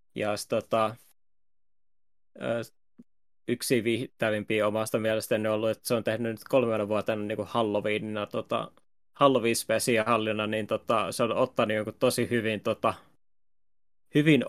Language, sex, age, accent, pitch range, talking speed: Finnish, male, 20-39, native, 110-120 Hz, 135 wpm